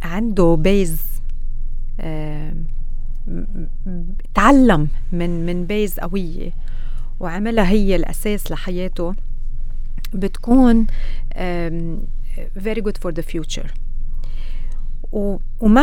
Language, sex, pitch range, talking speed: Arabic, female, 150-200 Hz, 65 wpm